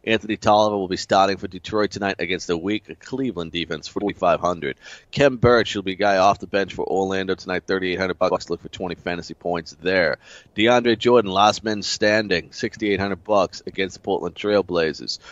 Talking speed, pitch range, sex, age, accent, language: 180 wpm, 95-115 Hz, male, 30-49, American, English